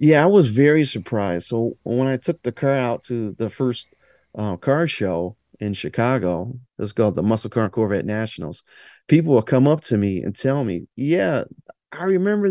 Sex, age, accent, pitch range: male, 40-59, American, 110-150 Hz